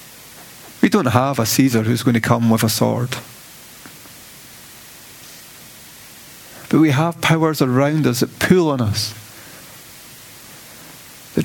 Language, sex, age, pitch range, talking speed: English, male, 30-49, 115-145 Hz, 120 wpm